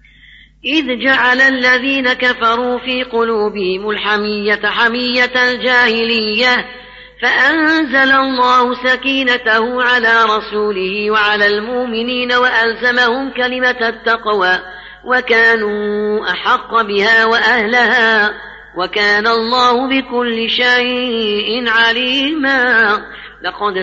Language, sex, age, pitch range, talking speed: Arabic, female, 30-49, 215-250 Hz, 75 wpm